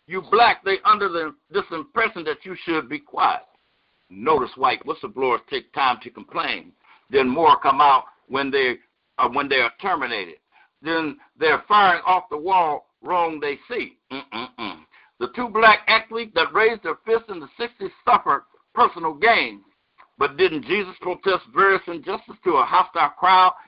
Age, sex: 60-79, male